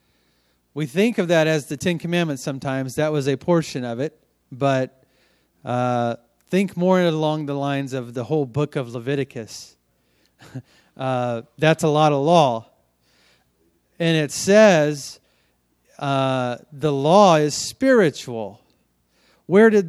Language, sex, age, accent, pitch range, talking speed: English, male, 40-59, American, 120-170 Hz, 135 wpm